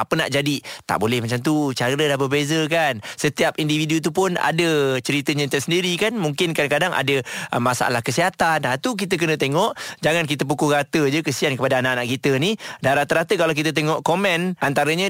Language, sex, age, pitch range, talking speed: Malay, male, 30-49, 130-165 Hz, 185 wpm